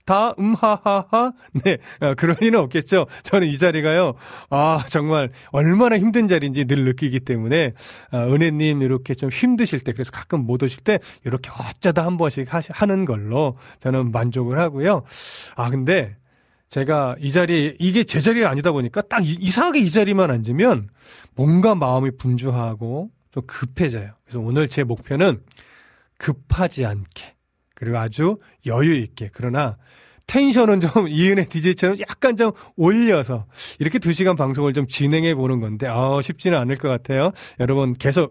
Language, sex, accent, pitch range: Korean, male, native, 125-180 Hz